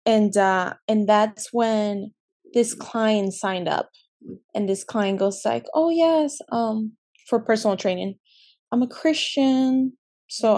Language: English